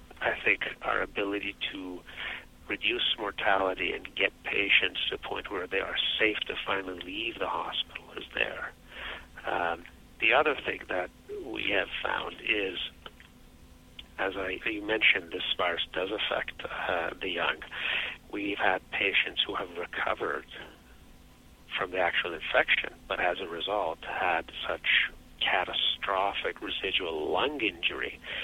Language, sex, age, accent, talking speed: English, male, 50-69, American, 135 wpm